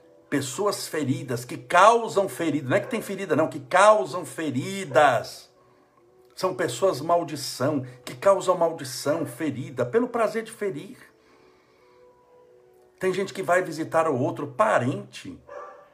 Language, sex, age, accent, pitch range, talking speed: Portuguese, male, 60-79, Brazilian, 125-160 Hz, 125 wpm